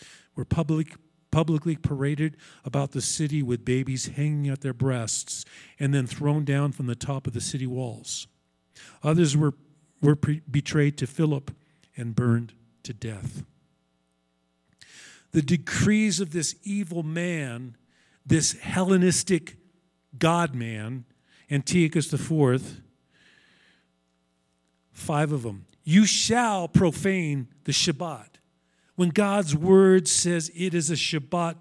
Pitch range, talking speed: 130-185 Hz, 115 wpm